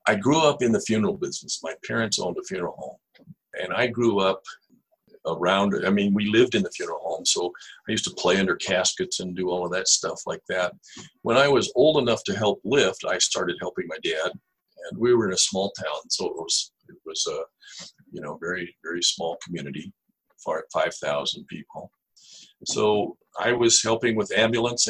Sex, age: male, 50-69